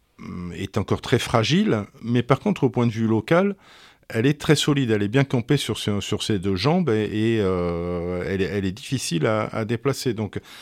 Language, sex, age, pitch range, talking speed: French, male, 50-69, 105-140 Hz, 215 wpm